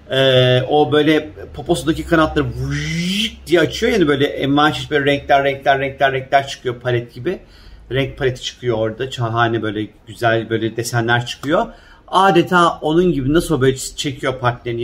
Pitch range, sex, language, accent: 135-175 Hz, male, Turkish, native